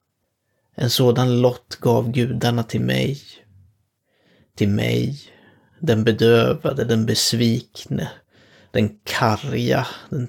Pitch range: 110-125 Hz